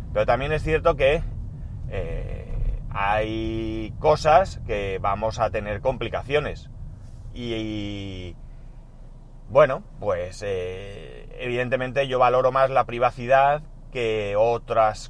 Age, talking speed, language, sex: 30-49, 105 wpm, Spanish, male